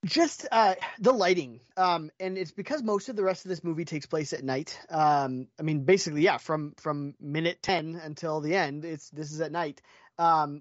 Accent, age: American, 30-49